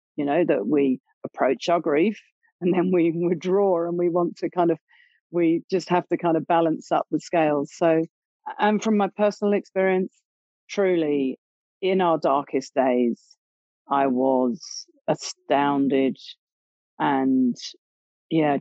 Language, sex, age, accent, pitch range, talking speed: English, female, 40-59, British, 130-180 Hz, 140 wpm